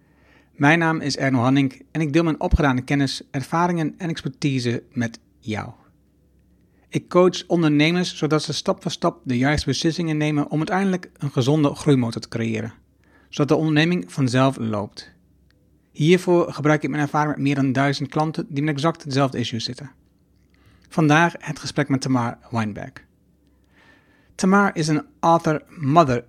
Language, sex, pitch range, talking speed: Dutch, male, 130-160 Hz, 155 wpm